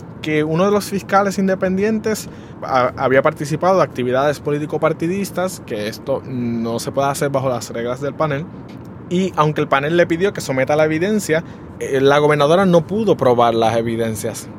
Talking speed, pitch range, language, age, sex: 160 wpm, 130-175 Hz, Spanish, 20-39, male